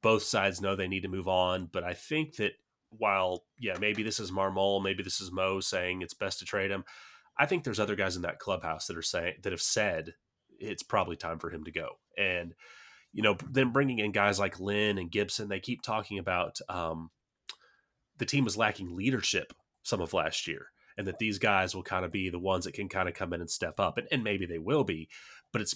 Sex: male